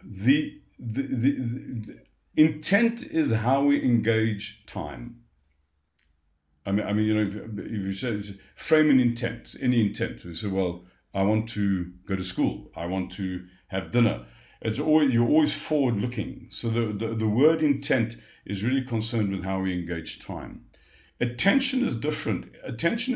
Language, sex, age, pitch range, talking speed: English, male, 50-69, 100-135 Hz, 165 wpm